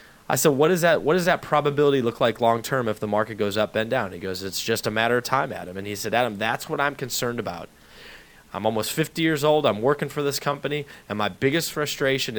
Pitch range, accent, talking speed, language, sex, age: 110-140 Hz, American, 245 wpm, English, male, 20-39